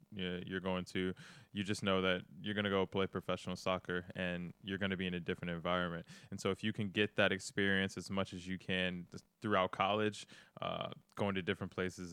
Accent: American